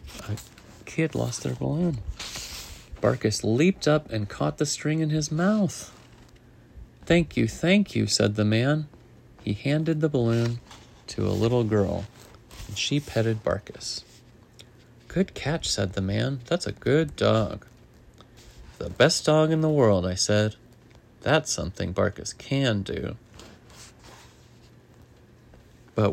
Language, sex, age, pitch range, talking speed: English, male, 30-49, 100-135 Hz, 130 wpm